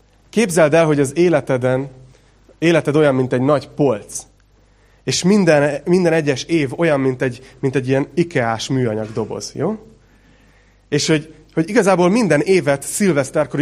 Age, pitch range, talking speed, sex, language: 30-49, 115-145 Hz, 140 wpm, male, Hungarian